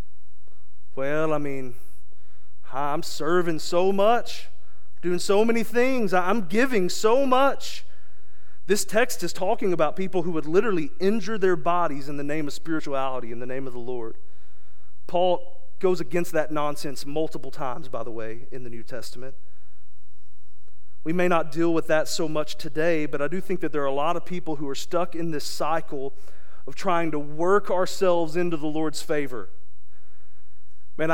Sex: male